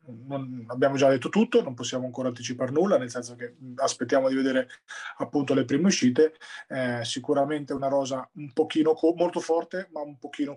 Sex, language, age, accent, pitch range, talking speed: male, Italian, 30-49, native, 135-160 Hz, 170 wpm